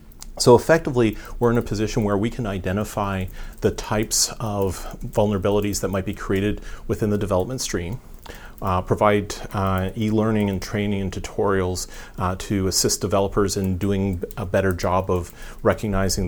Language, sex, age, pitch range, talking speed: English, male, 40-59, 90-105 Hz, 150 wpm